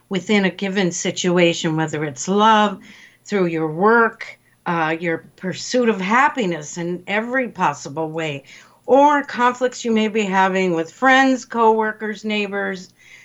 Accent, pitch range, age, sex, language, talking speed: American, 175-230 Hz, 50-69, female, English, 130 wpm